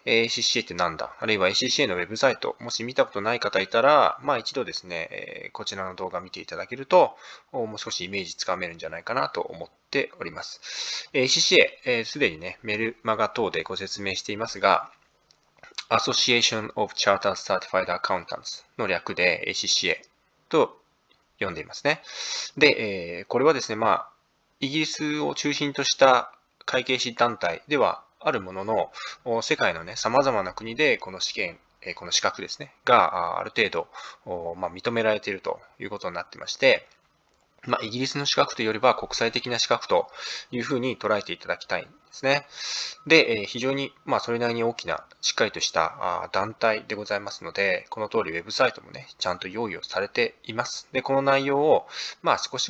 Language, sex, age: Japanese, male, 20-39